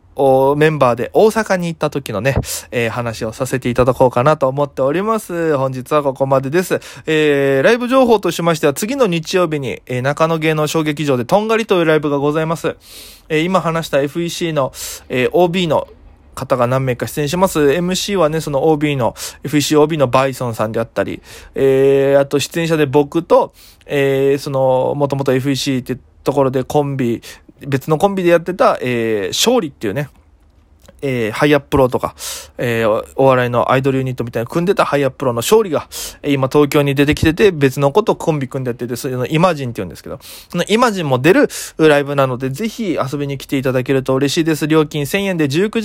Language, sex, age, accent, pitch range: Japanese, male, 20-39, native, 135-170 Hz